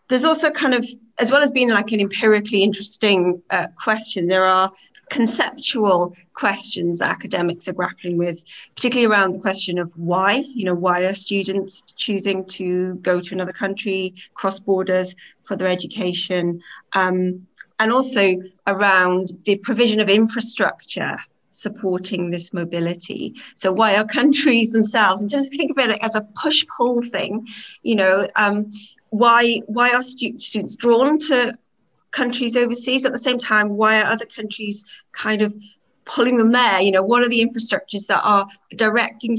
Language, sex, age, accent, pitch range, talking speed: English, female, 30-49, British, 185-235 Hz, 160 wpm